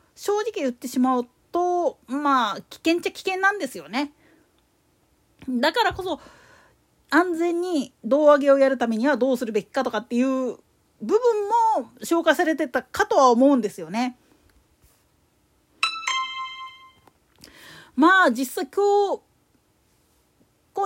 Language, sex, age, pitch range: Japanese, female, 40-59, 250-355 Hz